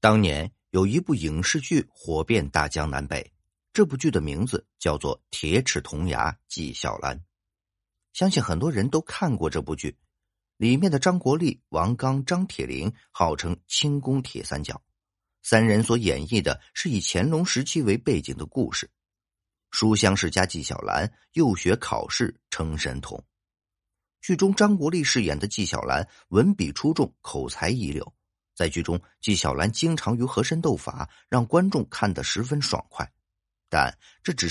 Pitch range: 85-135 Hz